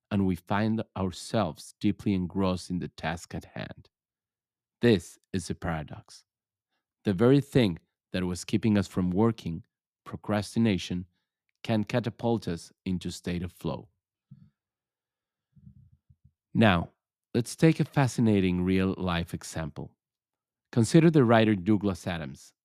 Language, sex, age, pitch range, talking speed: English, male, 40-59, 95-120 Hz, 120 wpm